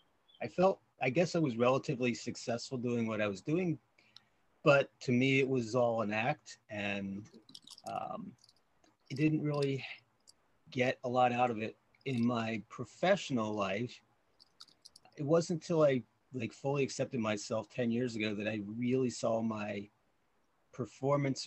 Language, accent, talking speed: English, American, 150 wpm